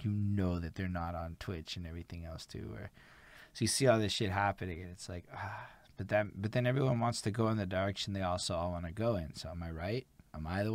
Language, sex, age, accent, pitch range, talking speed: English, male, 20-39, American, 90-105 Hz, 270 wpm